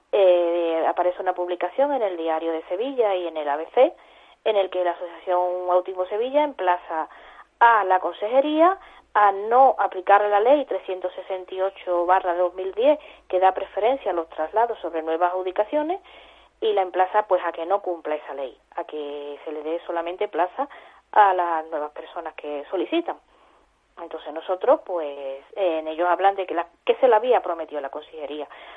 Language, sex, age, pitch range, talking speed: Spanish, female, 20-39, 170-210 Hz, 160 wpm